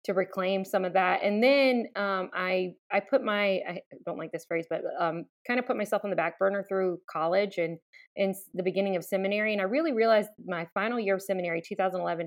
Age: 20-39